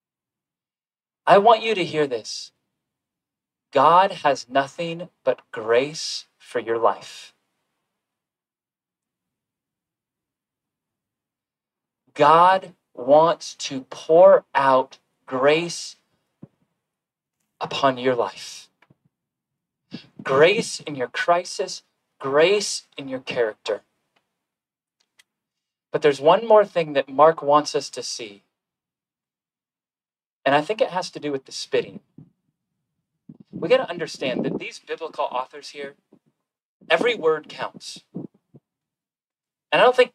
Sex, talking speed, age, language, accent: male, 100 wpm, 40-59, English, American